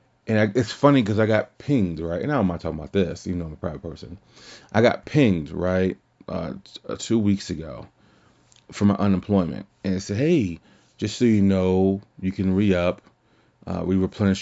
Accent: American